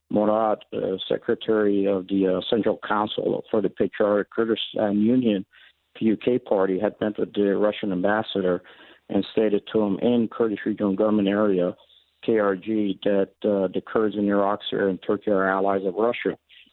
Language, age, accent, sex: English, 50-69, American, male